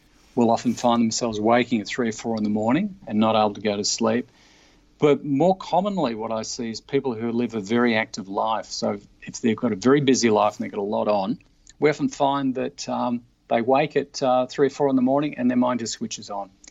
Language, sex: English, male